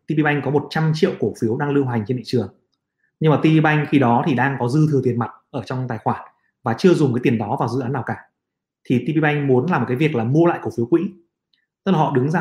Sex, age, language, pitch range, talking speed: male, 20-39, Vietnamese, 130-165 Hz, 270 wpm